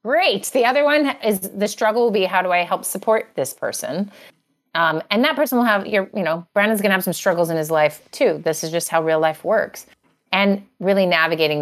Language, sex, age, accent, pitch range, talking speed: English, female, 30-49, American, 150-195 Hz, 230 wpm